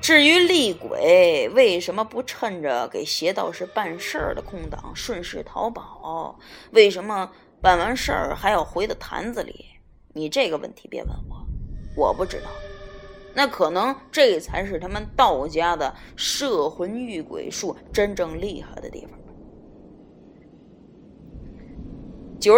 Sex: female